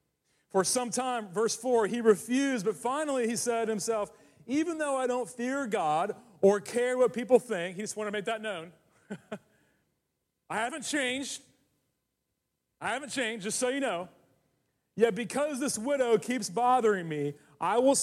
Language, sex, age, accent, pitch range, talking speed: English, male, 40-59, American, 195-245 Hz, 165 wpm